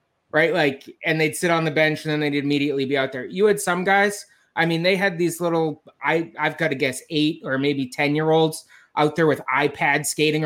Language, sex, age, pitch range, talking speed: English, male, 20-39, 150-180 Hz, 220 wpm